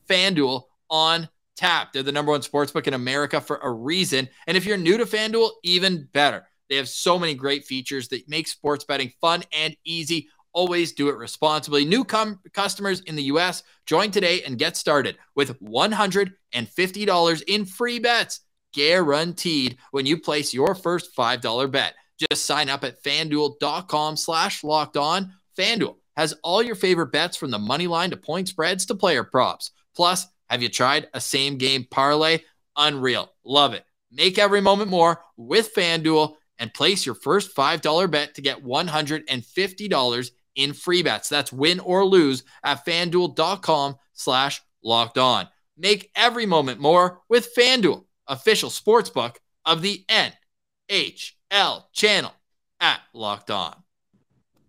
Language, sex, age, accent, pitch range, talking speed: English, male, 20-39, American, 140-185 Hz, 150 wpm